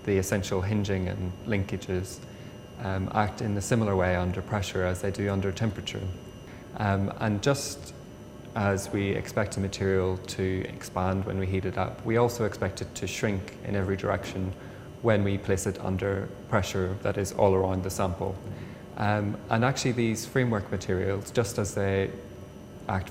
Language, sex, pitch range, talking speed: English, male, 95-110 Hz, 165 wpm